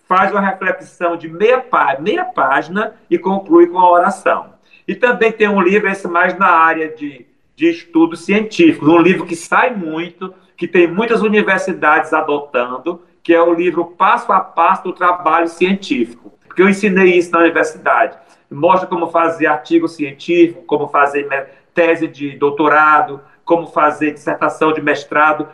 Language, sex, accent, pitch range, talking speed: Portuguese, male, Brazilian, 155-200 Hz, 155 wpm